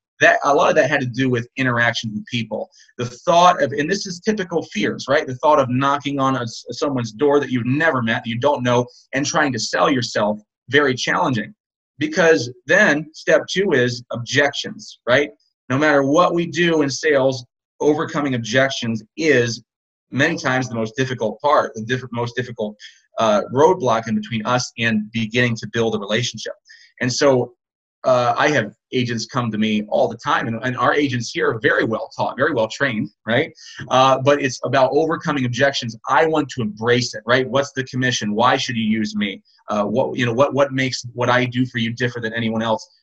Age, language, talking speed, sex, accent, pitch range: 30-49, English, 200 wpm, male, American, 115-140 Hz